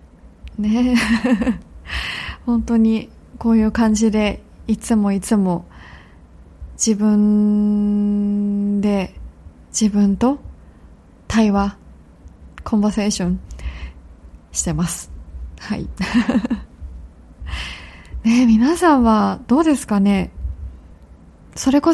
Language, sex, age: Japanese, female, 20-39